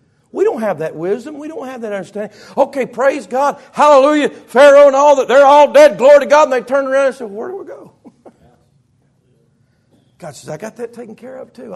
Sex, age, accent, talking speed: male, 60-79, American, 220 wpm